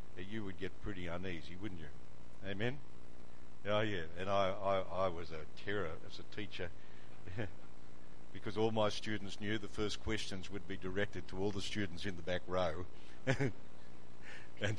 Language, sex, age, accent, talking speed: English, male, 60-79, Australian, 160 wpm